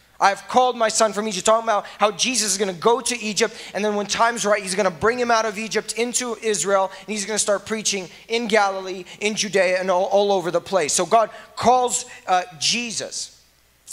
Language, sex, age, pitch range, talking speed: English, male, 20-39, 195-240 Hz, 225 wpm